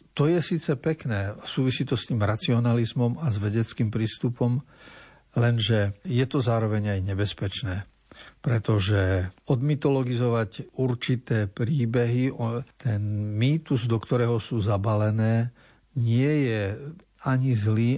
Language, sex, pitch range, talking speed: Slovak, male, 105-130 Hz, 115 wpm